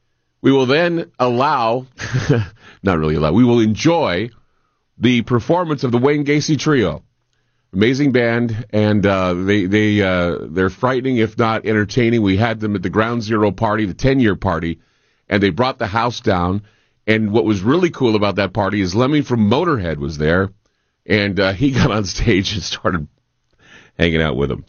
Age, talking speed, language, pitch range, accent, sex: 40-59, 175 wpm, English, 105-145 Hz, American, male